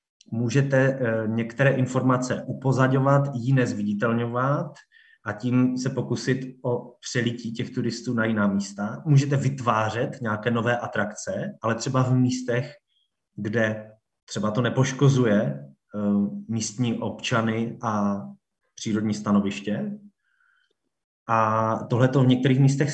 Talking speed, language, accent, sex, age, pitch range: 110 wpm, Czech, native, male, 20-39, 115-140 Hz